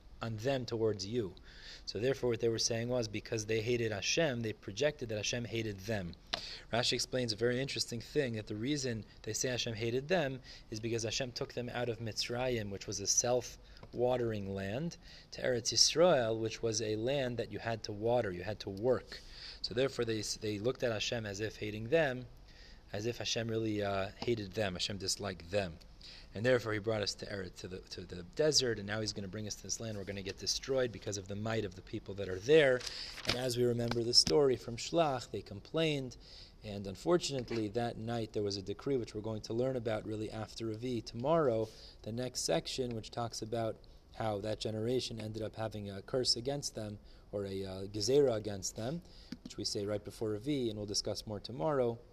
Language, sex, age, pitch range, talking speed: English, male, 20-39, 105-125 Hz, 210 wpm